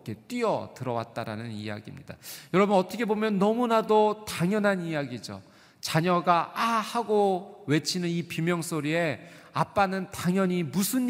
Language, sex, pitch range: Korean, male, 140-190 Hz